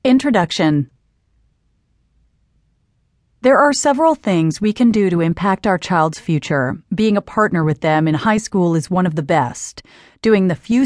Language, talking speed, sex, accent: English, 160 wpm, female, American